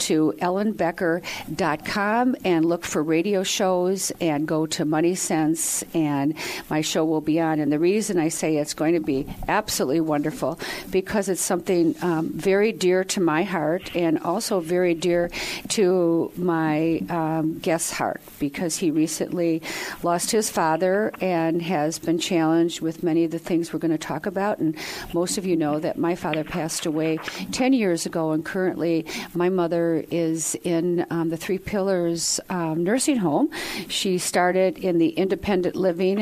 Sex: female